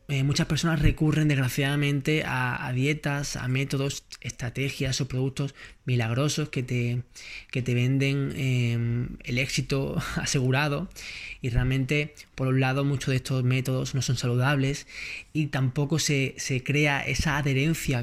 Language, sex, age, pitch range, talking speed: Spanish, male, 20-39, 125-140 Hz, 135 wpm